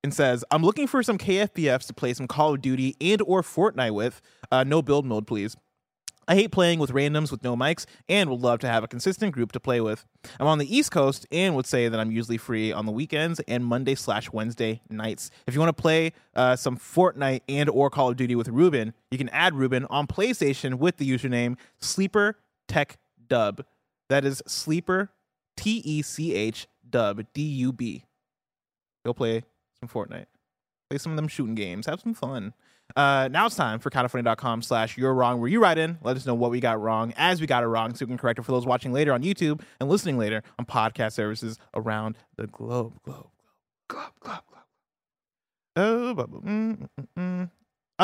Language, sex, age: English, male, 20-39